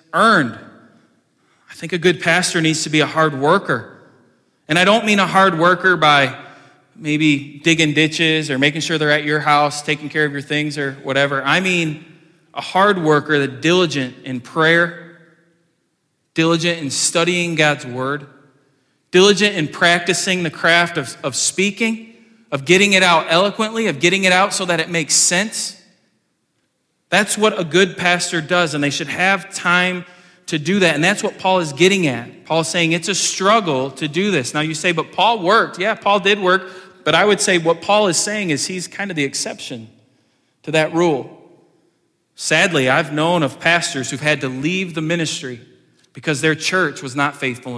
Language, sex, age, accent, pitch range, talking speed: English, male, 20-39, American, 145-180 Hz, 185 wpm